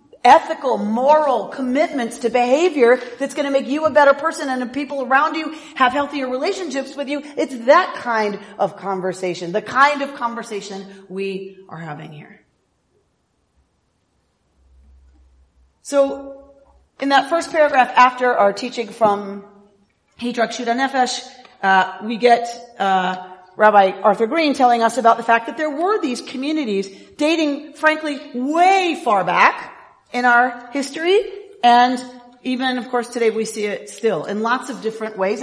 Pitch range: 210-280 Hz